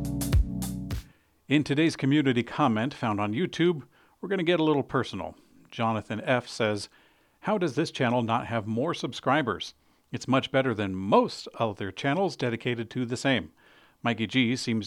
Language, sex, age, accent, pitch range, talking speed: English, male, 50-69, American, 105-135 Hz, 155 wpm